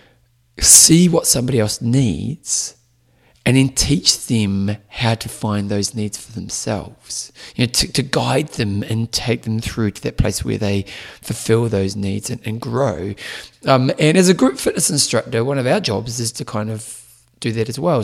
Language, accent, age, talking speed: English, British, 30-49, 185 wpm